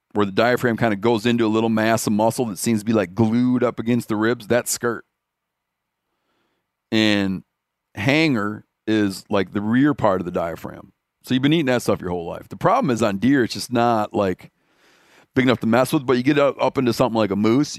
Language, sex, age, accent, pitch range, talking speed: English, male, 40-59, American, 105-125 Hz, 225 wpm